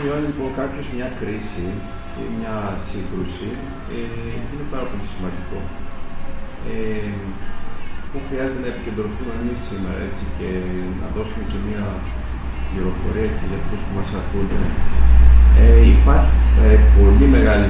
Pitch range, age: 90-105 Hz, 50-69